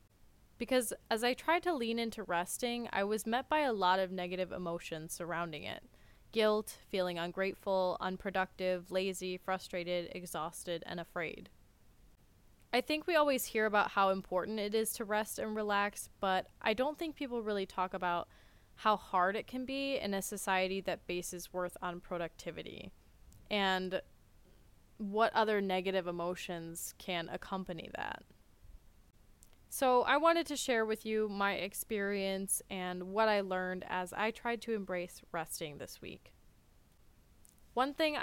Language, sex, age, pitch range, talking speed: English, female, 20-39, 180-225 Hz, 150 wpm